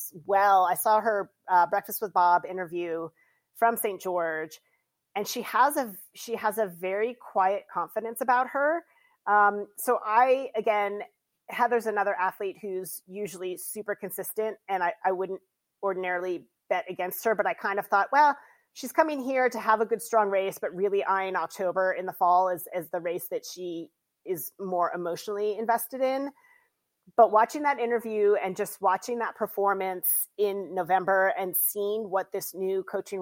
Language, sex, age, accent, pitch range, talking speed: English, female, 30-49, American, 185-245 Hz, 170 wpm